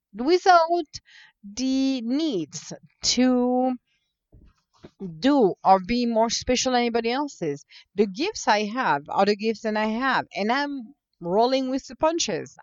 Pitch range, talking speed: 195-270 Hz, 135 wpm